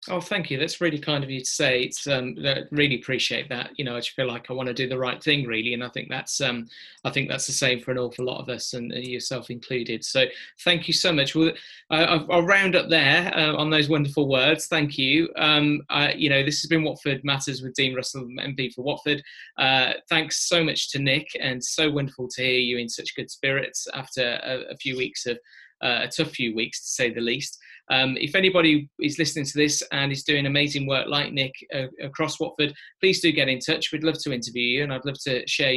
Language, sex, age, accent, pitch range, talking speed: English, male, 20-39, British, 125-150 Hz, 235 wpm